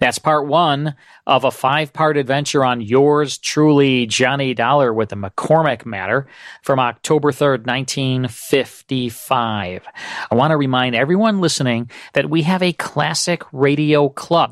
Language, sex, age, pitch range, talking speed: English, male, 40-59, 130-160 Hz, 135 wpm